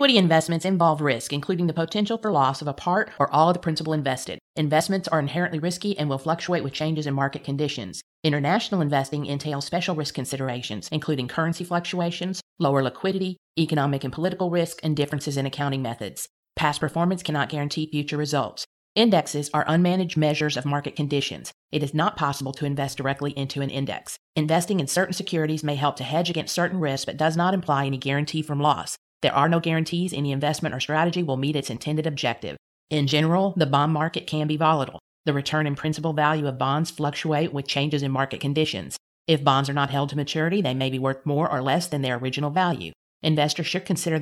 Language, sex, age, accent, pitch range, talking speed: English, female, 40-59, American, 140-165 Hz, 200 wpm